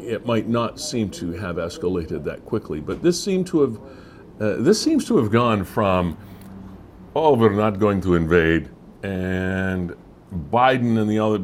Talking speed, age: 170 wpm, 60-79